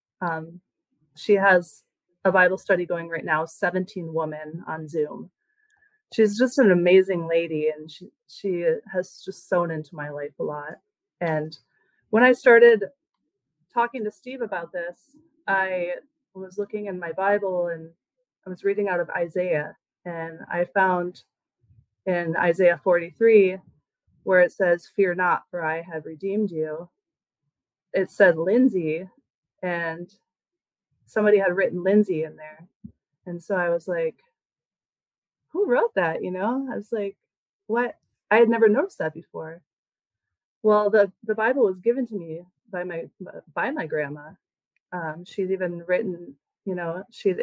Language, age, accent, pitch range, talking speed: English, 30-49, American, 165-210 Hz, 145 wpm